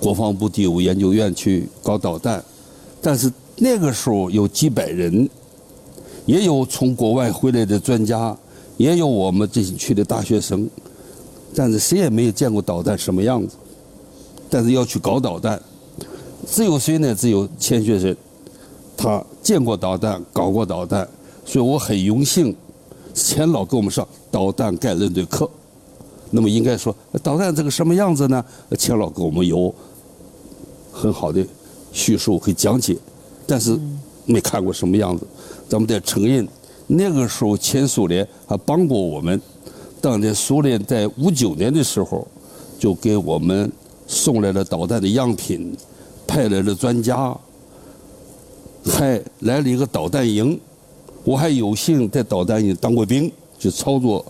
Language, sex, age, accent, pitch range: Chinese, male, 60-79, native, 100-135 Hz